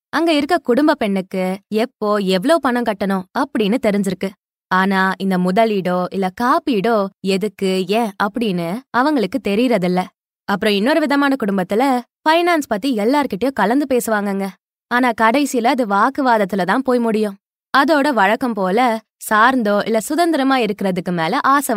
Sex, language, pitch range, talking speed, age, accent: female, Tamil, 195-265 Hz, 120 wpm, 20-39, native